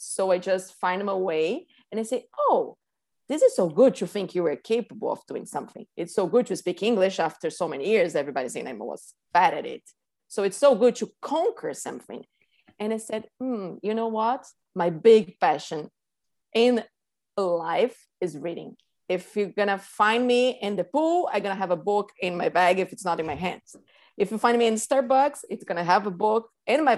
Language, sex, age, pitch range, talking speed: English, female, 30-49, 190-250 Hz, 220 wpm